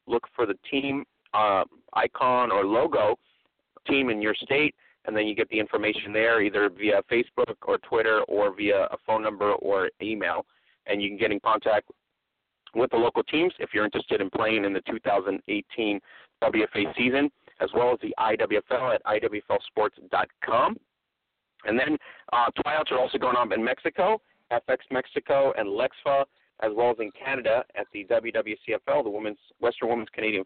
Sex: male